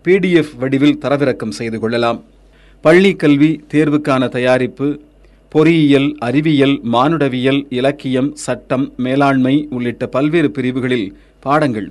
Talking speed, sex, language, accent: 90 wpm, male, Tamil, native